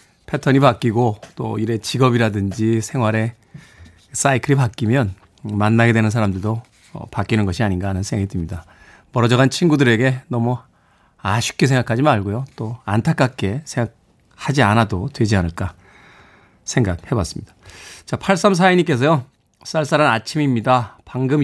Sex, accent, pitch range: male, native, 110-155 Hz